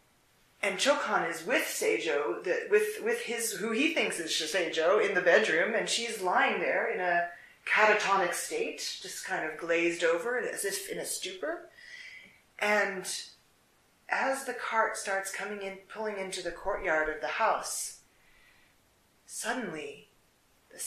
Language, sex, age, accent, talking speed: English, female, 30-49, American, 145 wpm